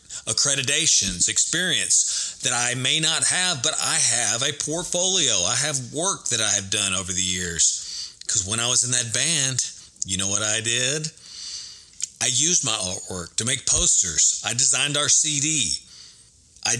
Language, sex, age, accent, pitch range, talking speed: English, male, 40-59, American, 110-145 Hz, 165 wpm